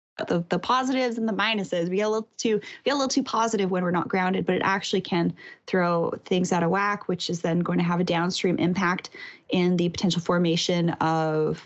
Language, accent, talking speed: English, American, 205 wpm